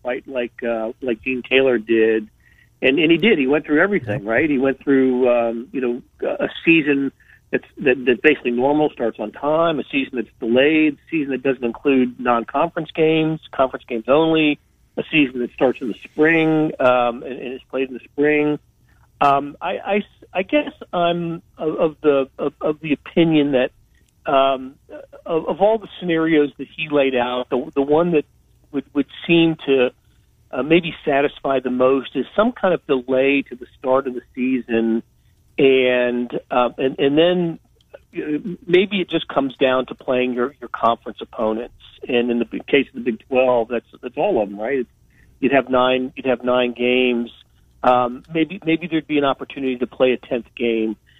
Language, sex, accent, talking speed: English, male, American, 185 wpm